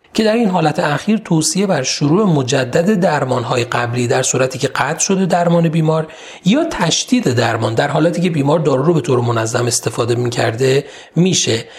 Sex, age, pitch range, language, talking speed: male, 40-59, 130-190 Hz, Persian, 170 wpm